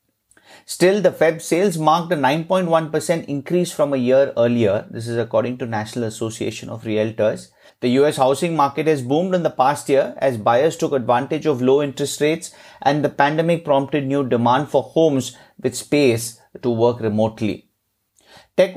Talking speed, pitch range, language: 165 wpm, 125-160 Hz, English